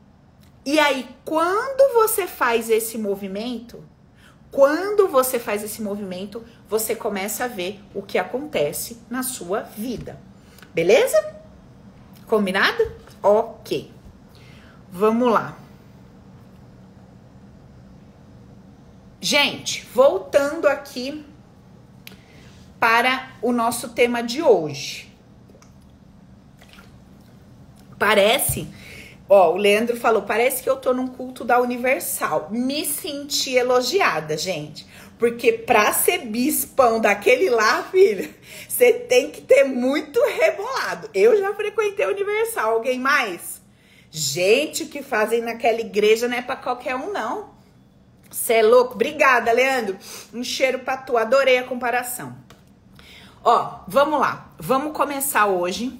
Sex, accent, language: female, Brazilian, Portuguese